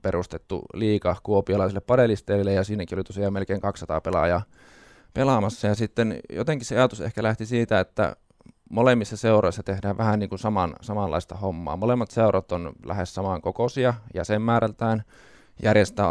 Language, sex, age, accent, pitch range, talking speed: Finnish, male, 20-39, native, 95-110 Hz, 135 wpm